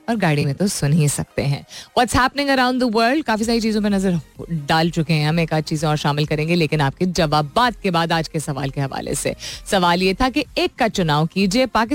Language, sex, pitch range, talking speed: Hindi, female, 165-235 Hz, 50 wpm